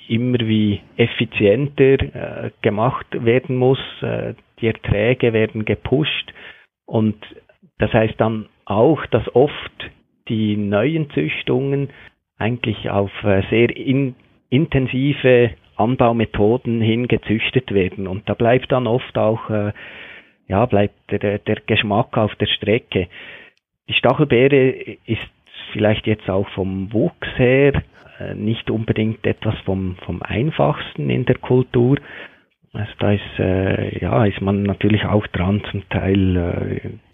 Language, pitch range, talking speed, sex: German, 105-125 Hz, 125 wpm, male